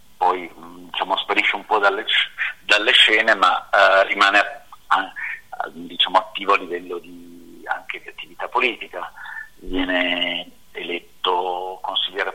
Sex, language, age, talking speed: male, Italian, 50-69, 120 wpm